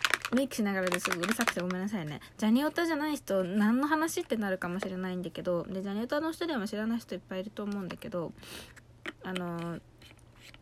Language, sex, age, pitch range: Japanese, female, 20-39, 185-240 Hz